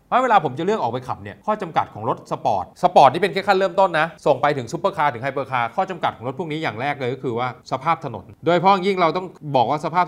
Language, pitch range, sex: Thai, 130-175 Hz, male